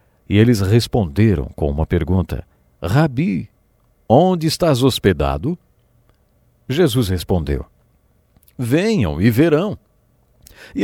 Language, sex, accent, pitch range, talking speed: English, male, Brazilian, 85-135 Hz, 90 wpm